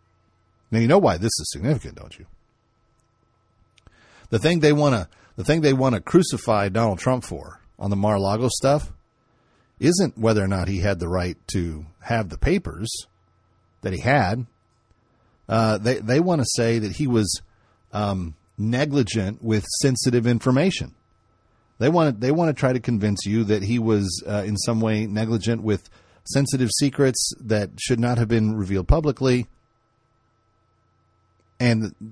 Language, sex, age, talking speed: English, male, 40-59, 160 wpm